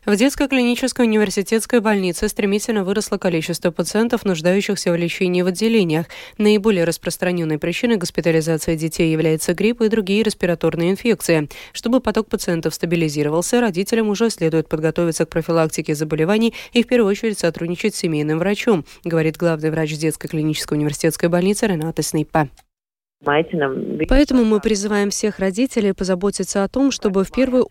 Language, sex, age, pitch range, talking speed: Russian, female, 20-39, 170-220 Hz, 140 wpm